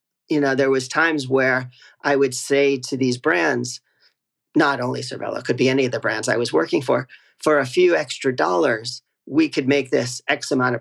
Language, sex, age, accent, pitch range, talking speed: English, male, 40-59, American, 125-160 Hz, 210 wpm